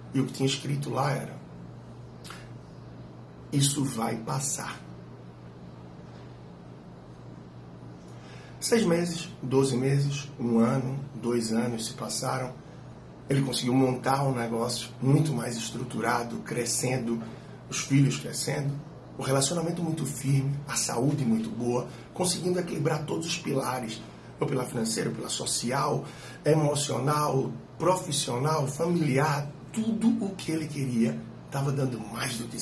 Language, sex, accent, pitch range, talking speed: Portuguese, male, Brazilian, 115-150 Hz, 115 wpm